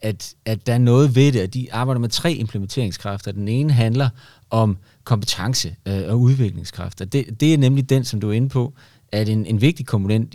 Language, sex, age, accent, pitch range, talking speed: Danish, male, 30-49, native, 105-130 Hz, 205 wpm